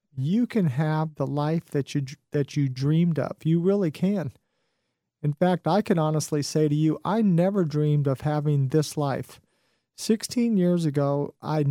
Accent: American